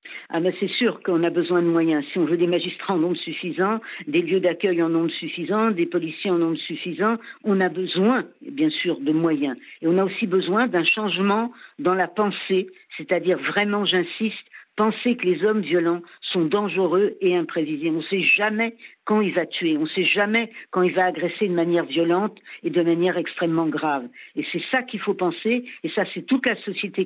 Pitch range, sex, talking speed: 170-225 Hz, female, 205 wpm